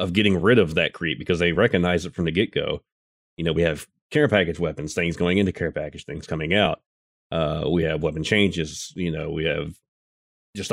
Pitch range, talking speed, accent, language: 85-100 Hz, 220 wpm, American, English